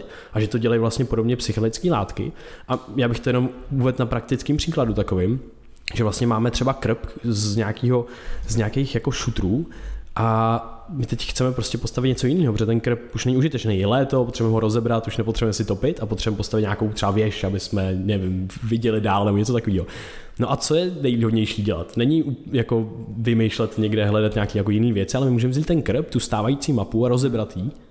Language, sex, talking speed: Czech, male, 195 wpm